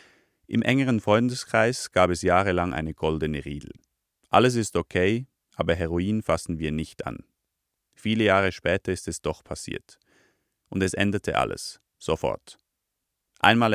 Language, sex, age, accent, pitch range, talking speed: German, male, 40-59, German, 80-100 Hz, 135 wpm